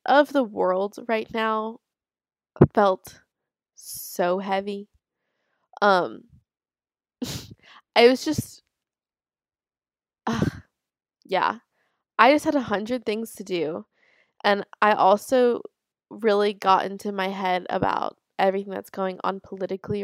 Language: English